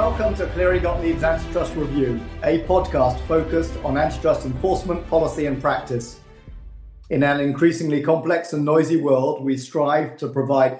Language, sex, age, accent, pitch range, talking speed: English, male, 40-59, British, 135-160 Hz, 150 wpm